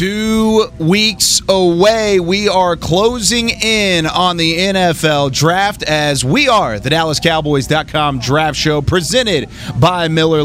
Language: English